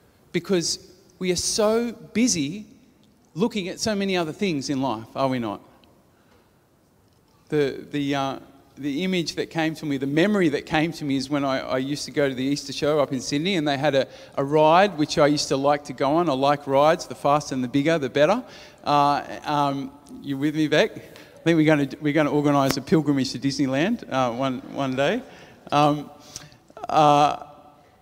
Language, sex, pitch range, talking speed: English, male, 140-180 Hz, 200 wpm